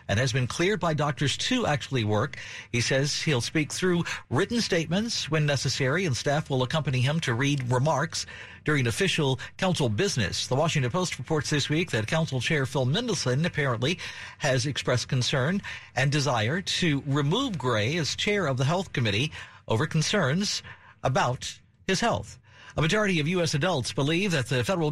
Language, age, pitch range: English, 50-69, 125-165 Hz